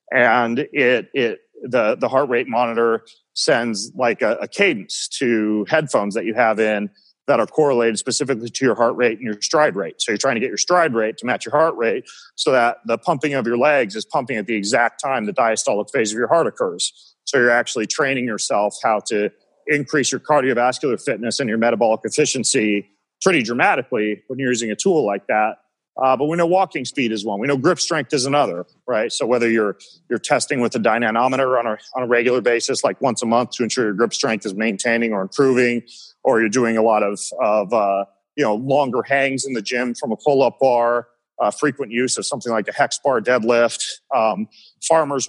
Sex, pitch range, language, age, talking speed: male, 115-140 Hz, English, 40-59, 215 wpm